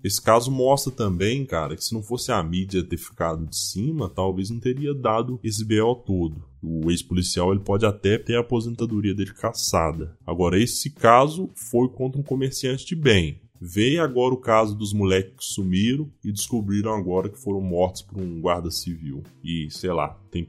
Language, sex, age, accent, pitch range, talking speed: Portuguese, male, 10-29, Brazilian, 90-115 Hz, 180 wpm